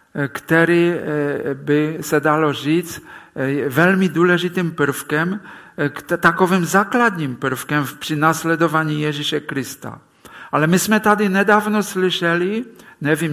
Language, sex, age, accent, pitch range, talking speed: Czech, male, 50-69, Polish, 145-190 Hz, 100 wpm